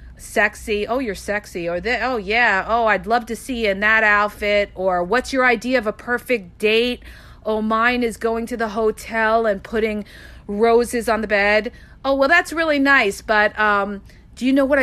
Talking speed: 200 wpm